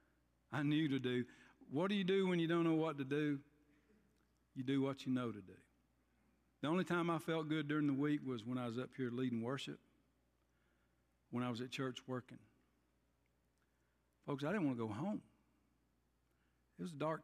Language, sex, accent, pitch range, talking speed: English, male, American, 120-160 Hz, 195 wpm